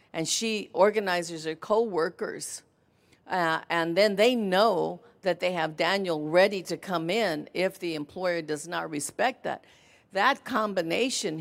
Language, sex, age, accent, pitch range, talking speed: English, female, 50-69, American, 170-205 Hz, 145 wpm